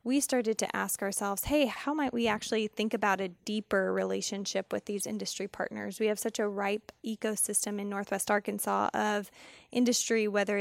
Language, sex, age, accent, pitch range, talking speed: English, female, 10-29, American, 200-225 Hz, 175 wpm